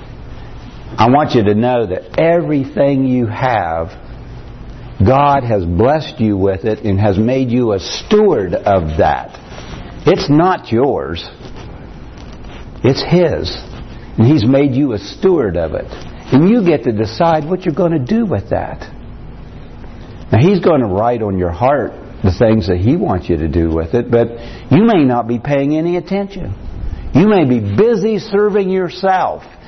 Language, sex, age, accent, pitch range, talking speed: English, male, 60-79, American, 110-155 Hz, 160 wpm